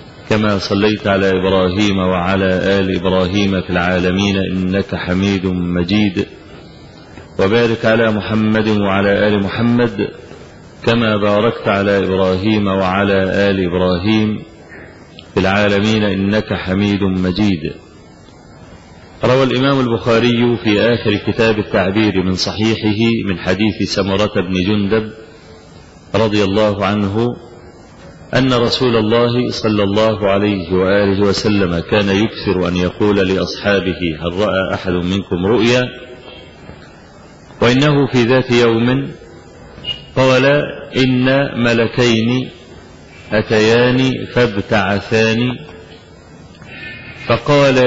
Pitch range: 95-120 Hz